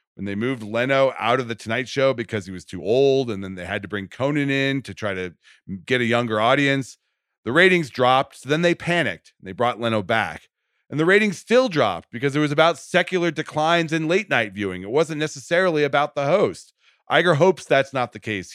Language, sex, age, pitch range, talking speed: English, male, 40-59, 105-150 Hz, 215 wpm